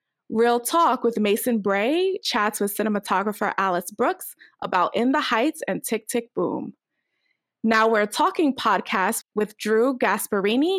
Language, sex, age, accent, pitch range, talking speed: English, female, 20-39, American, 200-250 Hz, 140 wpm